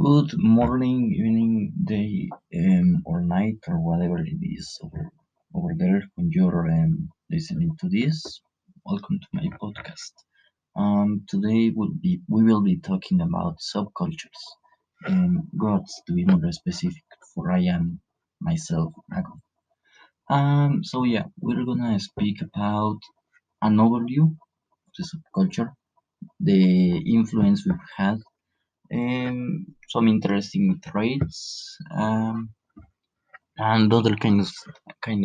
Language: English